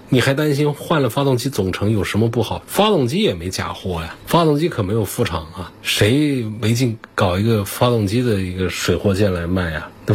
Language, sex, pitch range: Chinese, male, 95-125 Hz